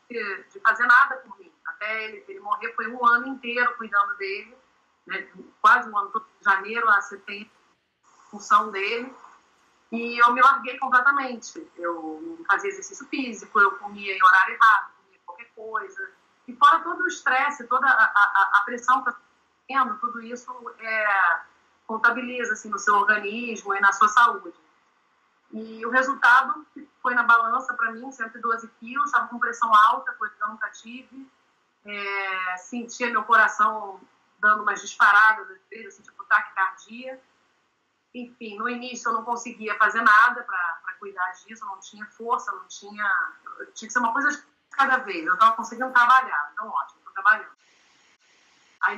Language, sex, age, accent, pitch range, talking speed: Portuguese, female, 30-49, Brazilian, 210-260 Hz, 160 wpm